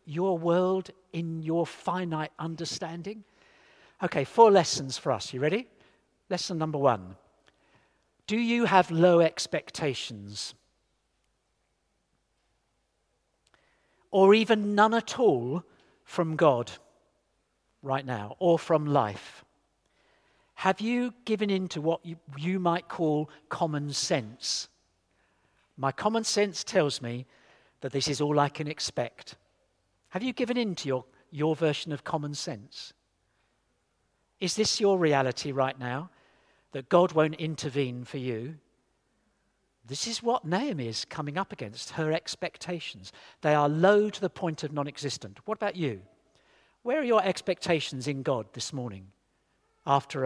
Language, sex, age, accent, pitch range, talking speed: English, male, 50-69, British, 125-180 Hz, 130 wpm